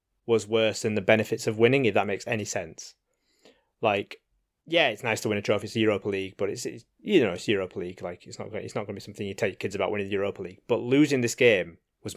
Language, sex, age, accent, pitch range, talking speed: English, male, 20-39, British, 105-125 Hz, 265 wpm